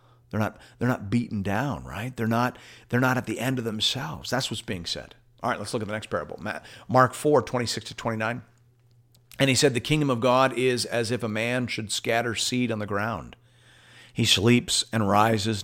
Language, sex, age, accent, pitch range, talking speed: English, male, 50-69, American, 110-130 Hz, 210 wpm